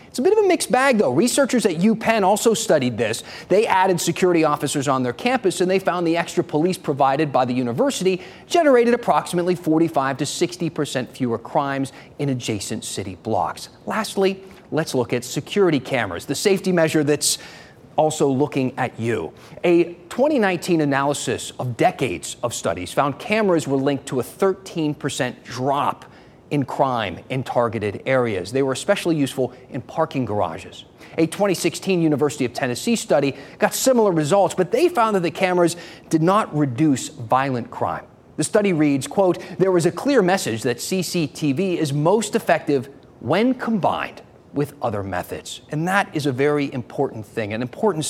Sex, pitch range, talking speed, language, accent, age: male, 130-180 Hz, 165 wpm, English, American, 30-49